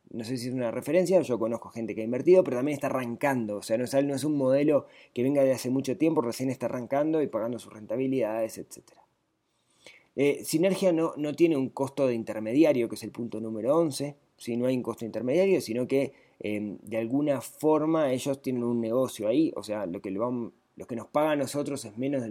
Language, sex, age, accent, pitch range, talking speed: Spanish, male, 20-39, Argentinian, 115-145 Hz, 225 wpm